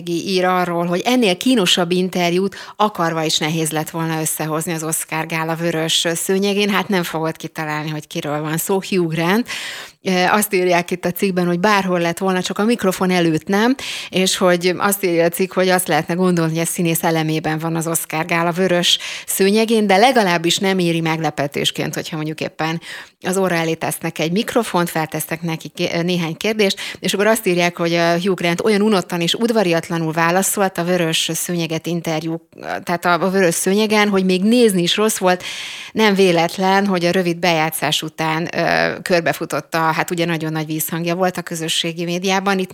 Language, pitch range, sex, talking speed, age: Hungarian, 165-195 Hz, female, 175 wpm, 30-49